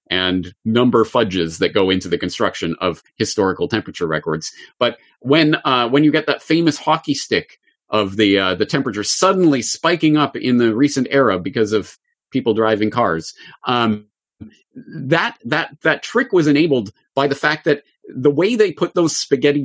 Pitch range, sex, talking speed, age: 105-150 Hz, male, 170 wpm, 30-49